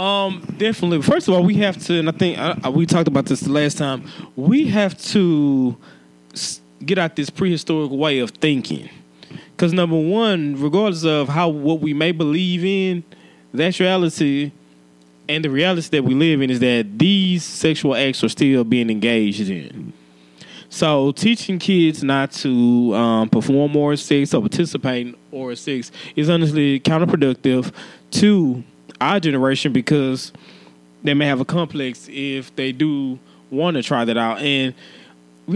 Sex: male